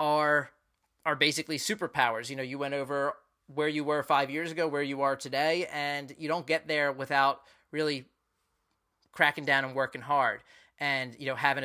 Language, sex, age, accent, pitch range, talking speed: English, male, 30-49, American, 140-170 Hz, 180 wpm